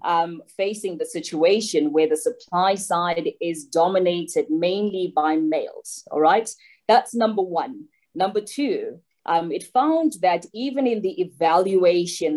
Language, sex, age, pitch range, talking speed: English, female, 20-39, 170-230 Hz, 135 wpm